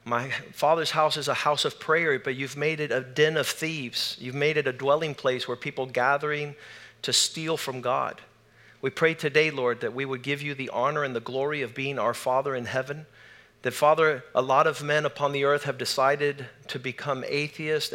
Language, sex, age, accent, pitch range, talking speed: English, male, 40-59, American, 130-150 Hz, 210 wpm